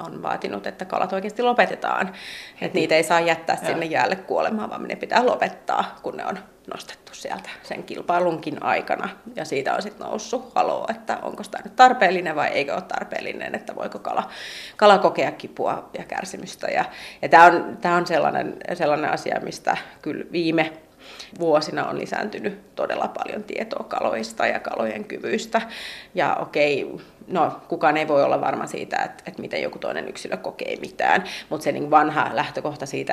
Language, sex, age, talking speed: Finnish, female, 30-49, 165 wpm